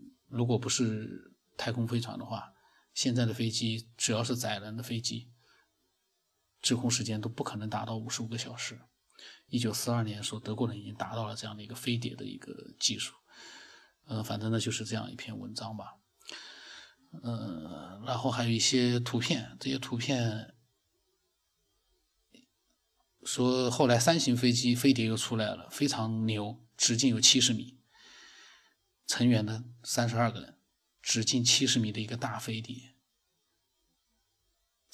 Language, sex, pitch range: Chinese, male, 115-130 Hz